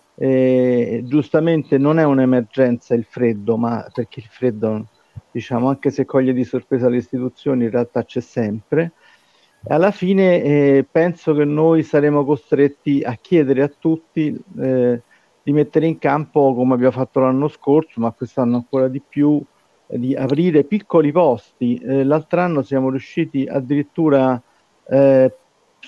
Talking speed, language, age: 140 wpm, Italian, 50-69